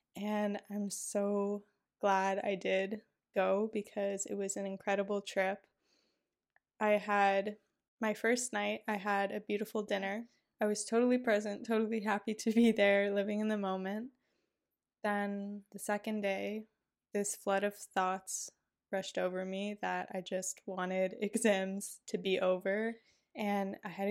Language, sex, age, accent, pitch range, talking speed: English, female, 10-29, American, 195-215 Hz, 145 wpm